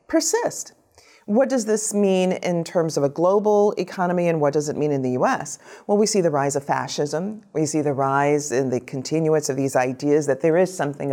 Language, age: English, 40-59